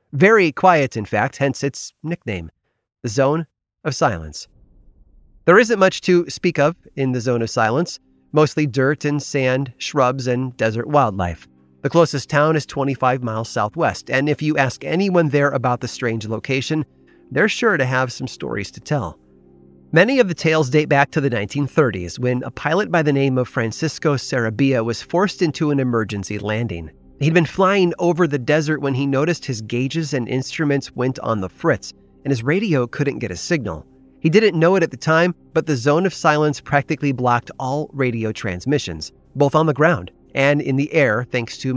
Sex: male